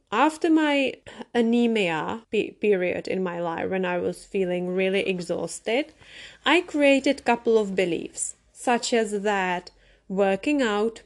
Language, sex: English, female